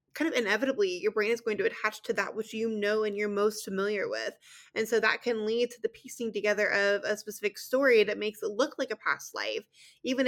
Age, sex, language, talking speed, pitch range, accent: 20-39, female, English, 240 wpm, 205-260 Hz, American